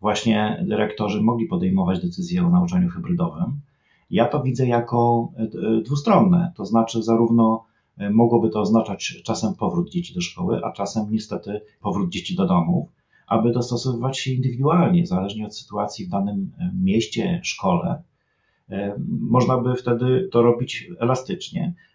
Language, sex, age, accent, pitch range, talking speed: Polish, male, 40-59, native, 115-175 Hz, 130 wpm